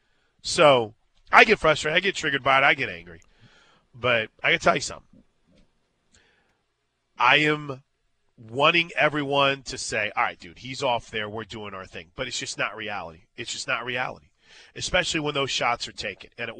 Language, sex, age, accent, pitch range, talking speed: English, male, 30-49, American, 130-180 Hz, 185 wpm